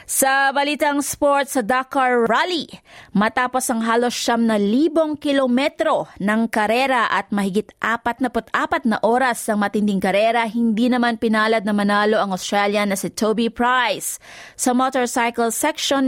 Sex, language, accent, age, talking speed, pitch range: female, English, Filipino, 30-49, 140 wpm, 215-260 Hz